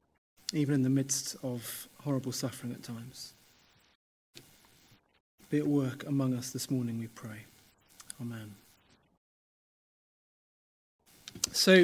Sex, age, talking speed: male, 30-49, 100 wpm